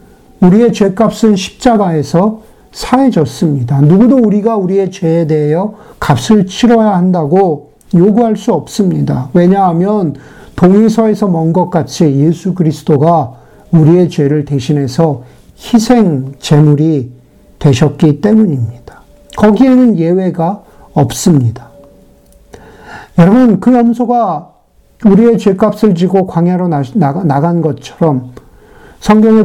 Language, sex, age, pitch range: Korean, male, 50-69, 150-195 Hz